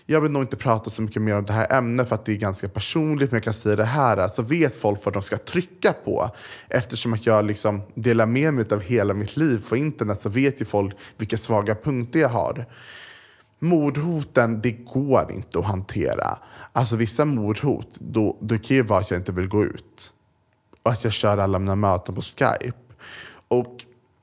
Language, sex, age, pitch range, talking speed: Swedish, male, 20-39, 110-130 Hz, 210 wpm